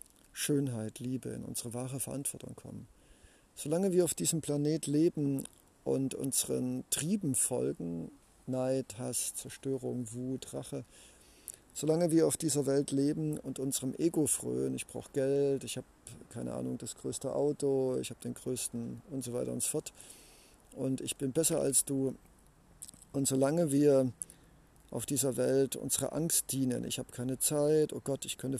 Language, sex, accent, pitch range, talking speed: German, male, German, 120-145 Hz, 155 wpm